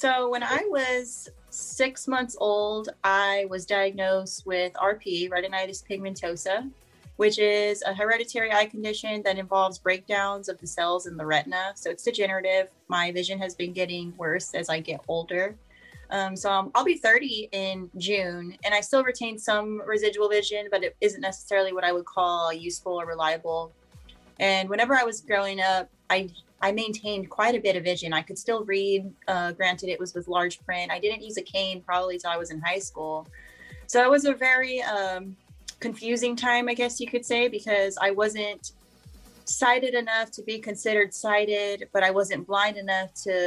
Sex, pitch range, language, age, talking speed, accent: female, 185-215 Hz, English, 20-39, 185 wpm, American